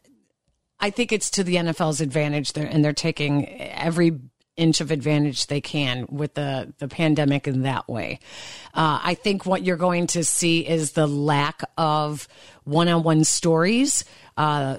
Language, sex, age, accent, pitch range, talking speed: English, female, 50-69, American, 155-185 Hz, 160 wpm